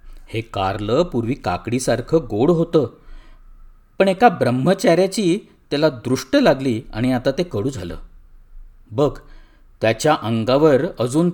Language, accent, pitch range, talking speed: Marathi, native, 95-130 Hz, 110 wpm